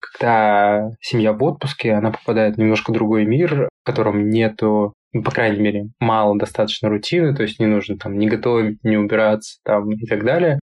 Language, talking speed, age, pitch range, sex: Russian, 185 wpm, 20-39, 105-115 Hz, male